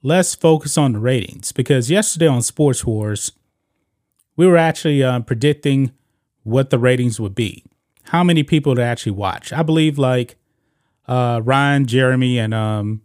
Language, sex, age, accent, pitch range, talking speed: English, male, 30-49, American, 115-150 Hz, 155 wpm